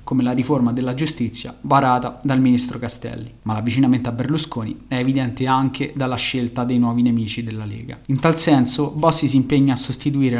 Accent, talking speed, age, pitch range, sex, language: native, 180 wpm, 20-39, 120-140 Hz, male, Italian